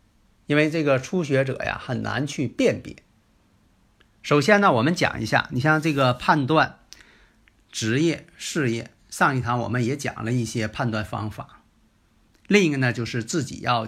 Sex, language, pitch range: male, Chinese, 110-150 Hz